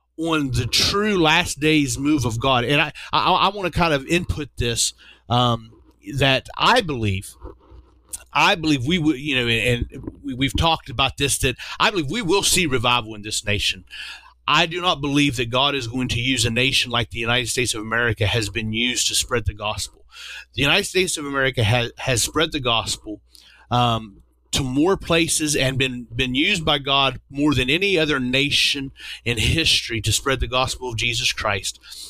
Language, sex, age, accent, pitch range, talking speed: English, male, 40-59, American, 120-155 Hz, 195 wpm